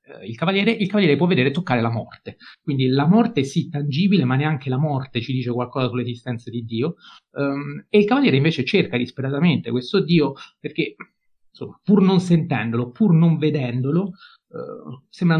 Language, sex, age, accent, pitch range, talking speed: Italian, male, 30-49, native, 120-165 Hz, 170 wpm